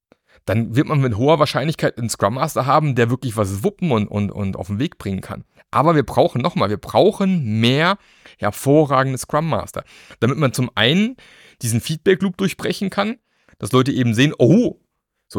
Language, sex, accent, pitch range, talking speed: German, male, German, 110-165 Hz, 180 wpm